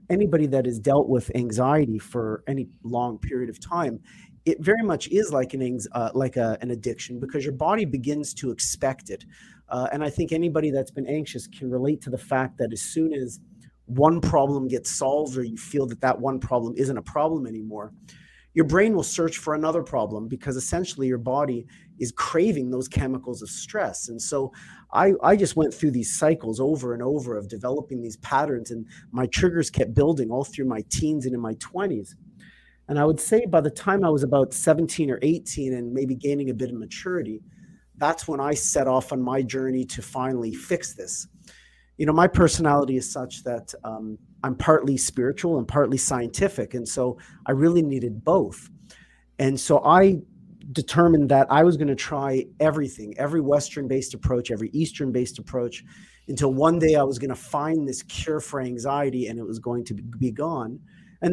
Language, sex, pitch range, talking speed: English, male, 125-155 Hz, 190 wpm